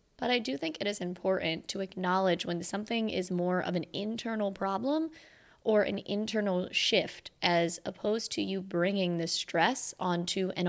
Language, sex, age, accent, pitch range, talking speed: English, female, 20-39, American, 170-205 Hz, 170 wpm